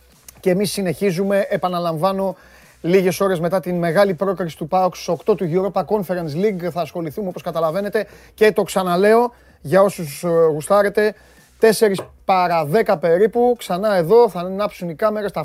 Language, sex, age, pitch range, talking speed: Greek, male, 30-49, 165-210 Hz, 150 wpm